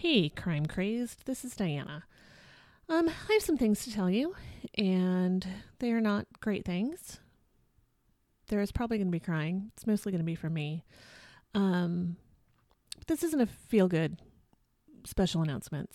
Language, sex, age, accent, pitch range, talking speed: English, female, 30-49, American, 175-240 Hz, 155 wpm